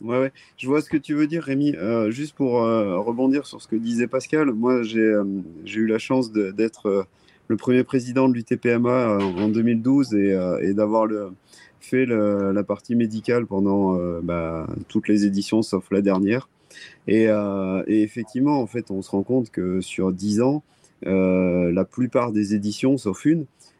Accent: French